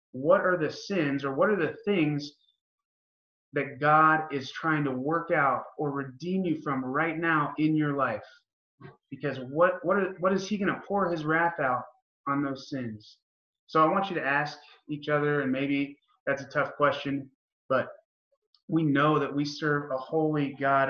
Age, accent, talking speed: 20-39, American, 185 wpm